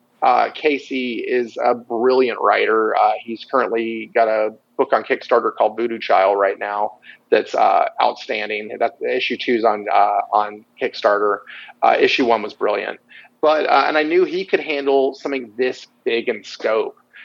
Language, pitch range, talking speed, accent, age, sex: English, 115-160 Hz, 170 wpm, American, 30-49, male